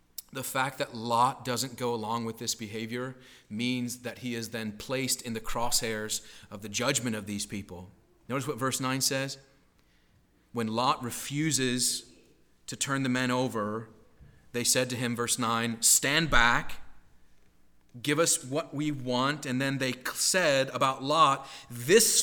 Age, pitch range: 30-49, 110-130 Hz